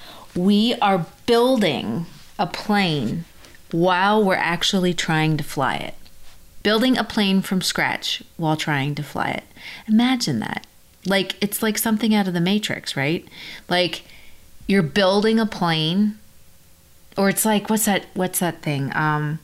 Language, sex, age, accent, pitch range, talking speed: English, female, 30-49, American, 155-205 Hz, 145 wpm